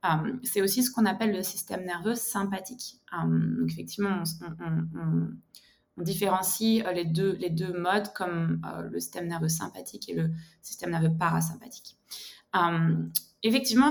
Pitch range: 165-215 Hz